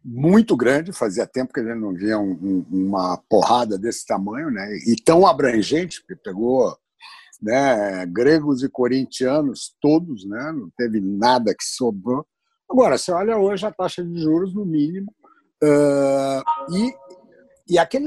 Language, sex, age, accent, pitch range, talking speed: Portuguese, male, 60-79, Brazilian, 145-225 Hz, 145 wpm